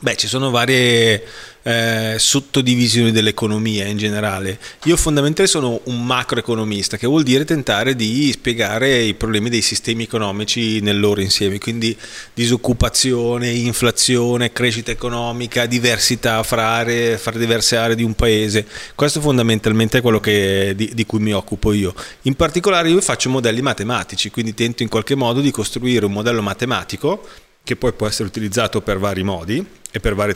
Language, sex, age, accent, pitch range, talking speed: Italian, male, 30-49, native, 105-125 Hz, 155 wpm